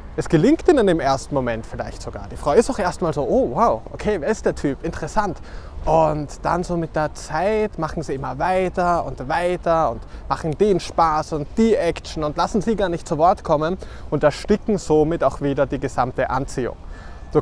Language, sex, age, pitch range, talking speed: German, male, 20-39, 140-195 Hz, 205 wpm